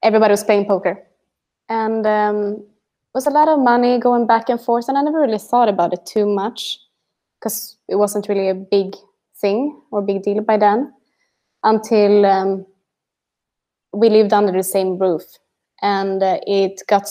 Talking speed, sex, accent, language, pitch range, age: 170 wpm, female, Swedish, English, 200-220 Hz, 20-39